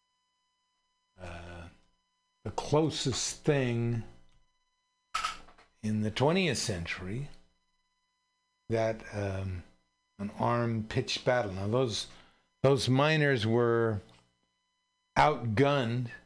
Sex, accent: male, American